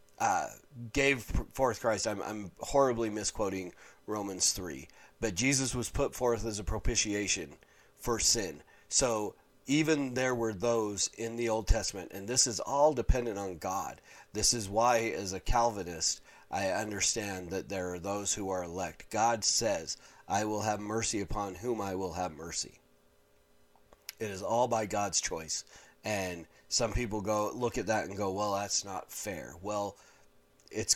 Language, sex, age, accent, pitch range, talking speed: English, male, 30-49, American, 95-115 Hz, 165 wpm